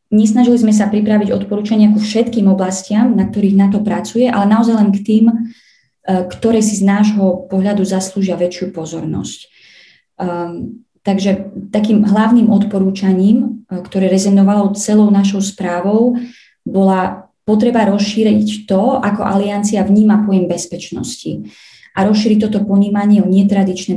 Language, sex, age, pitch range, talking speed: Slovak, female, 20-39, 190-210 Hz, 125 wpm